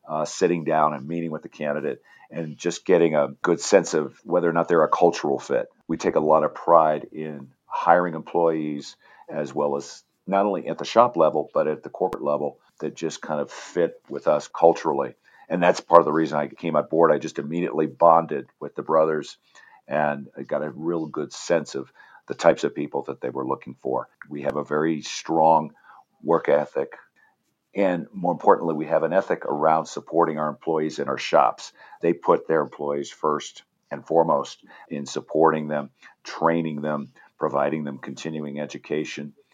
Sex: male